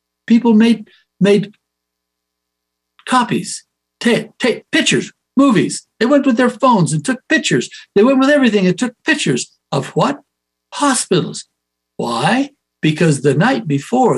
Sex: male